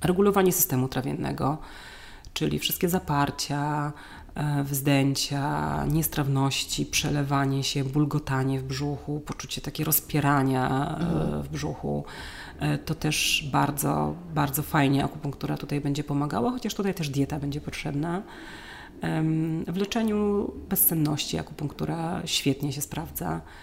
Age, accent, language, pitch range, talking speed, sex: 30-49, native, Polish, 140-160 Hz, 100 wpm, female